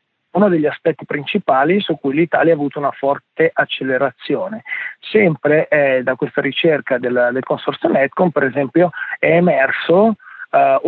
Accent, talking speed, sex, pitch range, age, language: native, 145 wpm, male, 140-175 Hz, 40-59, Italian